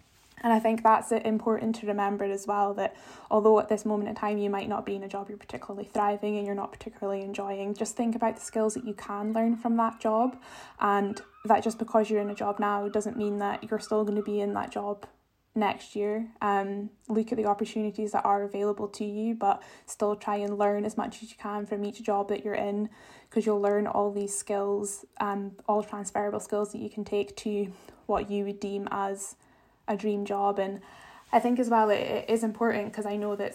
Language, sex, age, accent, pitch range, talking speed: English, female, 10-29, British, 200-220 Hz, 225 wpm